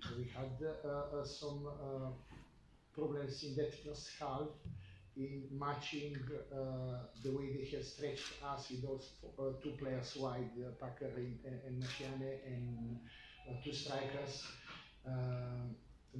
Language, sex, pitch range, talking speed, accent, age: English, male, 130-145 Hz, 135 wpm, Italian, 50-69